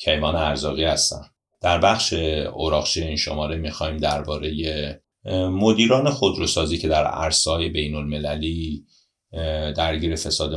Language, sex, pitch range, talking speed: Persian, male, 75-80 Hz, 100 wpm